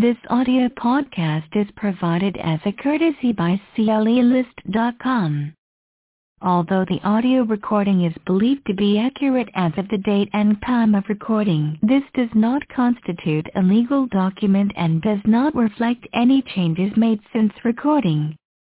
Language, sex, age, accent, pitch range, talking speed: English, female, 50-69, American, 190-240 Hz, 140 wpm